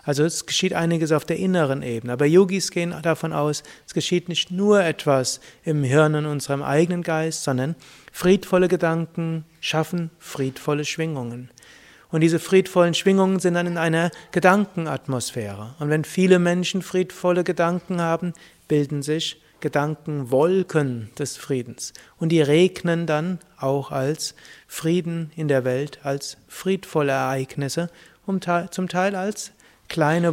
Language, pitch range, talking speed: German, 140-170 Hz, 140 wpm